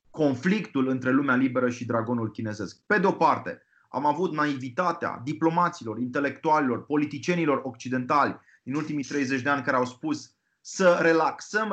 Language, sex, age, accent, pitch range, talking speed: Romanian, male, 30-49, native, 135-175 Hz, 140 wpm